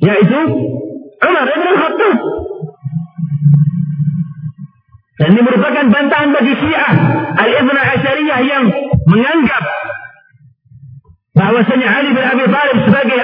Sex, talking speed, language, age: male, 80 wpm, Indonesian, 50-69